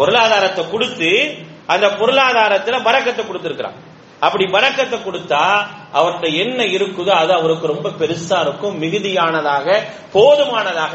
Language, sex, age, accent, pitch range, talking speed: English, male, 30-49, Indian, 190-250 Hz, 110 wpm